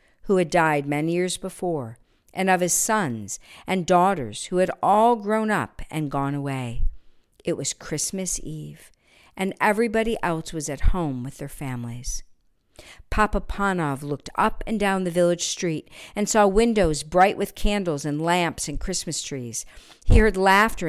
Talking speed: 160 wpm